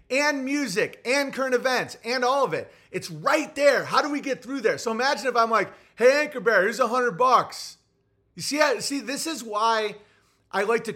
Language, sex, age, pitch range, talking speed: English, male, 30-49, 205-265 Hz, 215 wpm